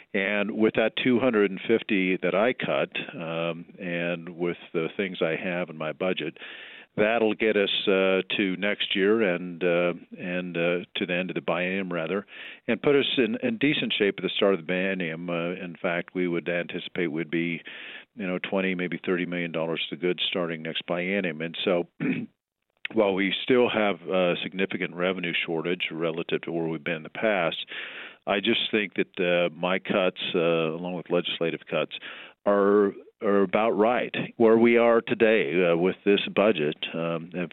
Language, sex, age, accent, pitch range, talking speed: English, male, 50-69, American, 85-100 Hz, 175 wpm